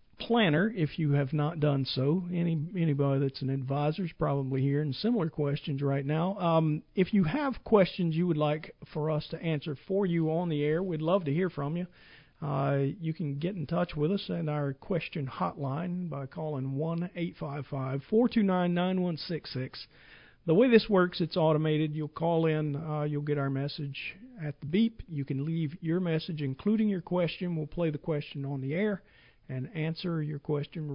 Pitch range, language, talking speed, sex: 145-180 Hz, English, 205 wpm, male